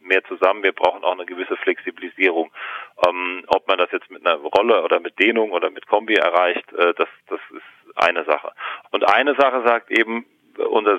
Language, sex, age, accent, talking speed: German, male, 40-59, German, 190 wpm